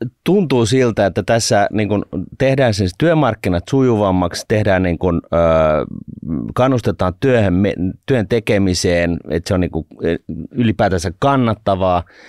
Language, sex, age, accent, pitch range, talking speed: Finnish, male, 30-49, native, 90-110 Hz, 110 wpm